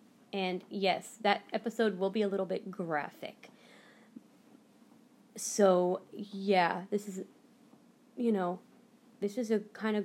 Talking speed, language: 125 wpm, English